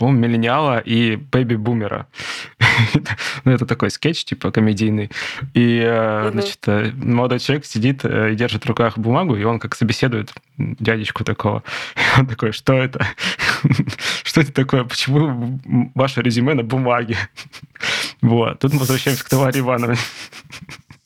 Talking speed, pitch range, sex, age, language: 125 wpm, 115-135 Hz, male, 20-39, Russian